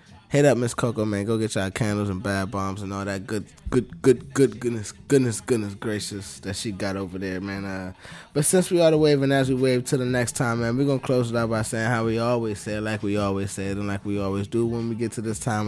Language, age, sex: English, 20-39, male